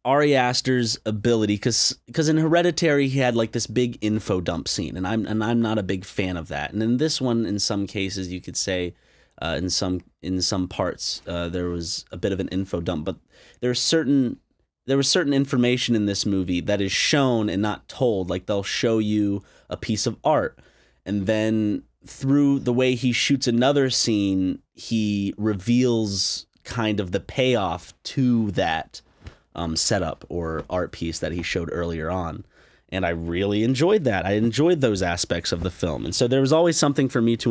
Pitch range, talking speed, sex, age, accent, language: 95-125 Hz, 195 wpm, male, 30-49, American, English